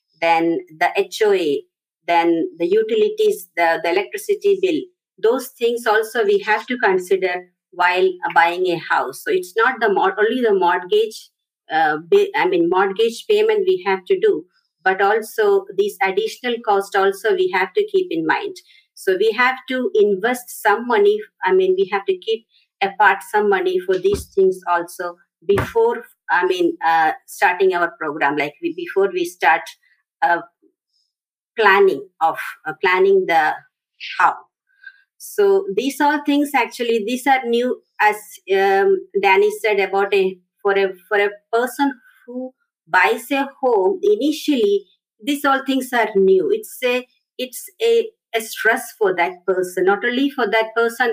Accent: Indian